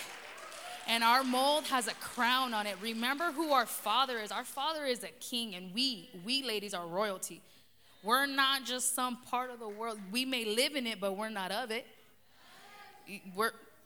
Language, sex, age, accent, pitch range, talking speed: English, female, 20-39, American, 190-260 Hz, 185 wpm